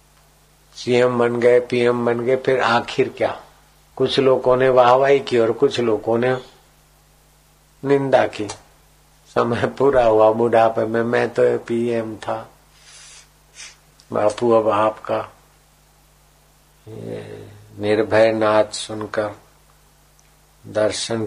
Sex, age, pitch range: male, 50-69, 105-120 Hz